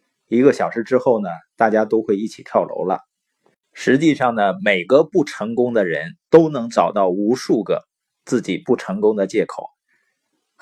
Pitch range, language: 125-180 Hz, Chinese